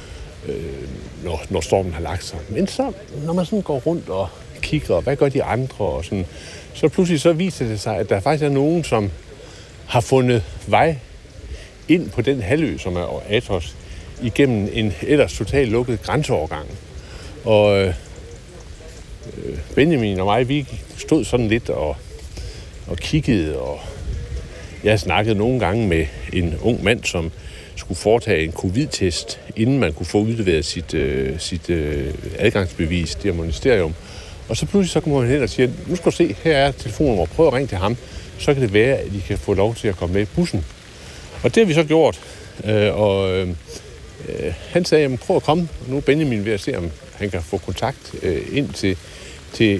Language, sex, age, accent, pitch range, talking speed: Danish, male, 60-79, native, 90-135 Hz, 190 wpm